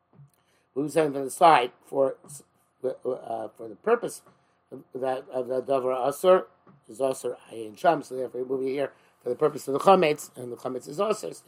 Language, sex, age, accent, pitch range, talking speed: English, male, 50-69, American, 135-175 Hz, 205 wpm